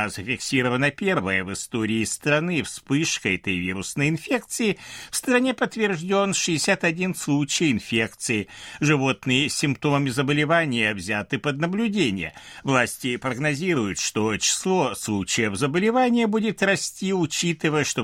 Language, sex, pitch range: Russian, male, 110-175 Hz